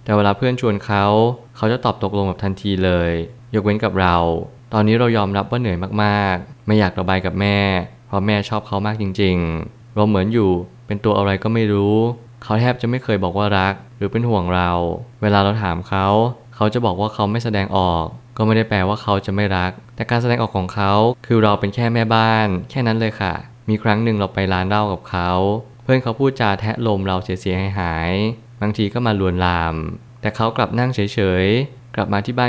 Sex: male